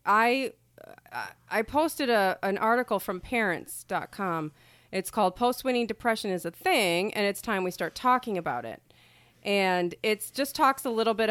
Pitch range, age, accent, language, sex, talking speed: 165-220 Hz, 30-49, American, English, female, 175 wpm